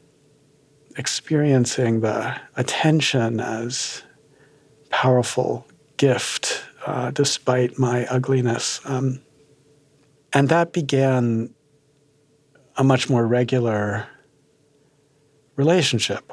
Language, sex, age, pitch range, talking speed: English, male, 50-69, 120-145 Hz, 70 wpm